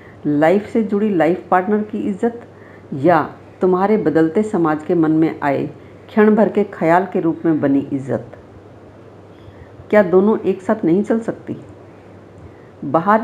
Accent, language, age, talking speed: native, Hindi, 50-69, 145 wpm